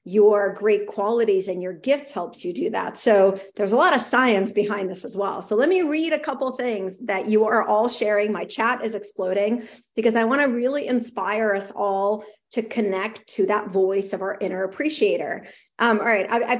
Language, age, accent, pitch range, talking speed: English, 40-59, American, 210-285 Hz, 210 wpm